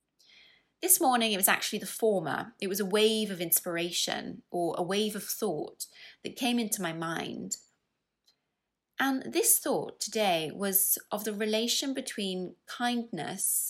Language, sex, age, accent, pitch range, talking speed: English, female, 20-39, British, 180-240 Hz, 145 wpm